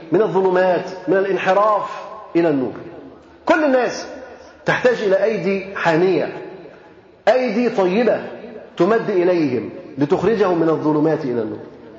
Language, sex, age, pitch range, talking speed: Arabic, male, 40-59, 175-230 Hz, 105 wpm